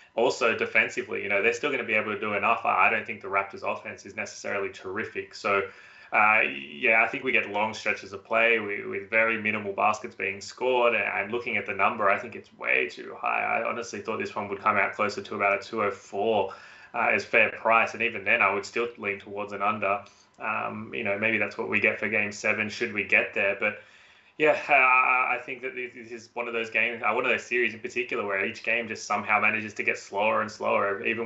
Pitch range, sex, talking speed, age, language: 100-120 Hz, male, 230 wpm, 20-39, English